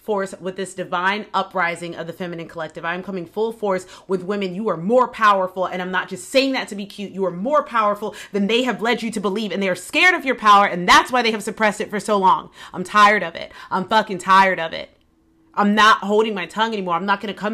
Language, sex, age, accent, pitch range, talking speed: English, female, 30-49, American, 190-225 Hz, 255 wpm